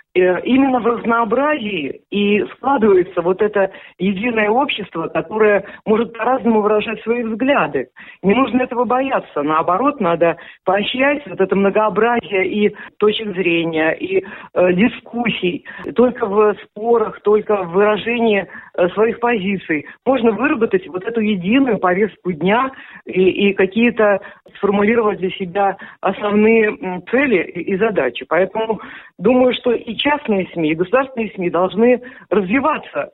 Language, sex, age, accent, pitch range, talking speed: Russian, female, 50-69, native, 170-230 Hz, 120 wpm